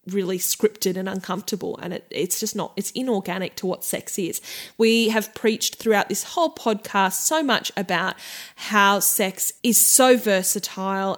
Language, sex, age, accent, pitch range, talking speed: English, female, 10-29, Australian, 185-210 Hz, 160 wpm